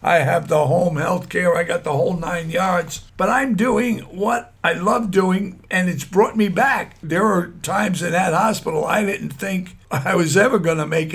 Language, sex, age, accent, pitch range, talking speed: English, male, 60-79, American, 170-210 Hz, 210 wpm